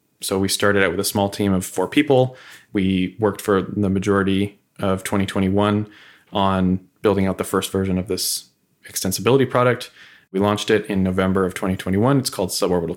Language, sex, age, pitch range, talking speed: English, male, 20-39, 95-110 Hz, 175 wpm